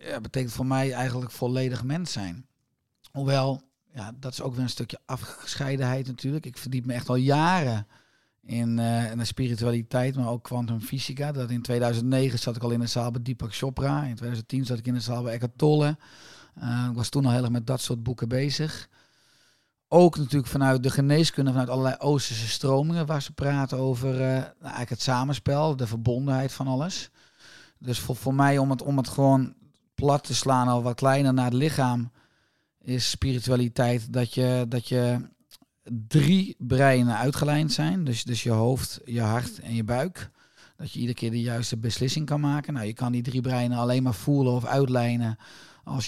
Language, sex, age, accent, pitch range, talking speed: Dutch, male, 40-59, Dutch, 120-135 Hz, 190 wpm